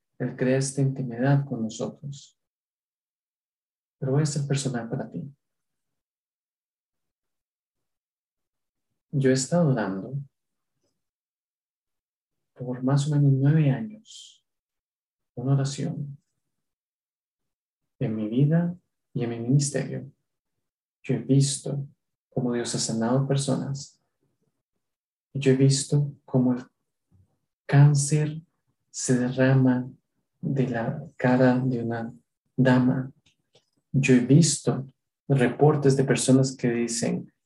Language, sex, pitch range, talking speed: English, male, 125-140 Hz, 100 wpm